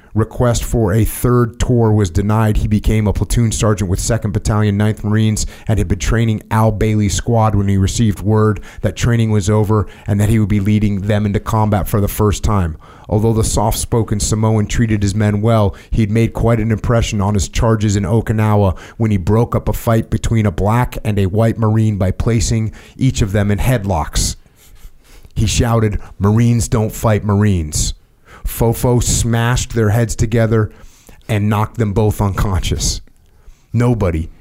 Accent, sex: American, male